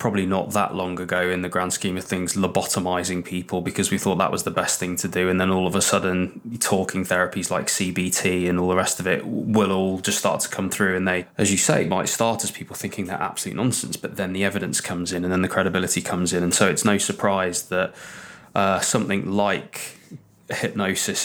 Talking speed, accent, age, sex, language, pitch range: 230 wpm, British, 20-39, male, English, 90-100 Hz